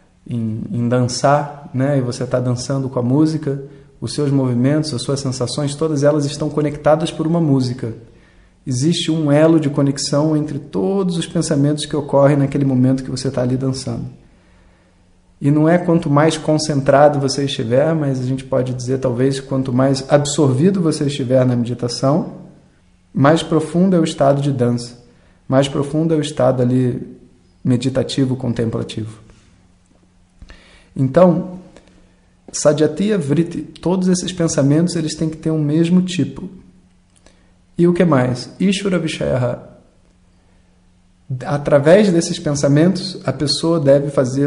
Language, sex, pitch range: Portuguese, male, 120-155 Hz